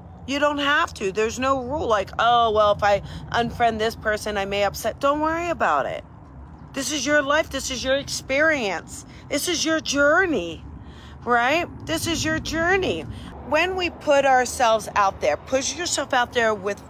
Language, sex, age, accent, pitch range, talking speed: English, female, 40-59, American, 230-300 Hz, 180 wpm